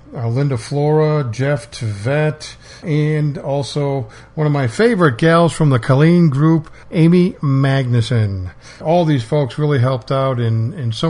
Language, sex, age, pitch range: English, male, 50-69, 120-155 Hz